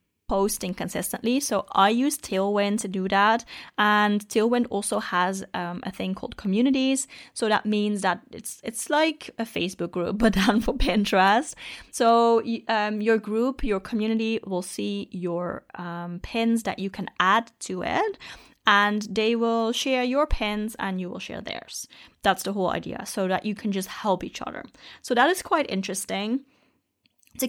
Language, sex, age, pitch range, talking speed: English, female, 20-39, 195-245 Hz, 170 wpm